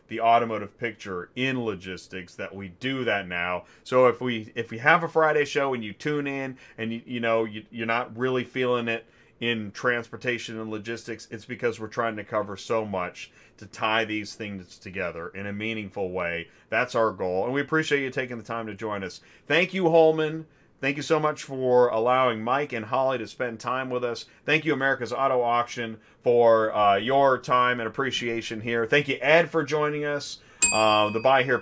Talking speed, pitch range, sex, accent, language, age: 200 wpm, 105-135 Hz, male, American, English, 30-49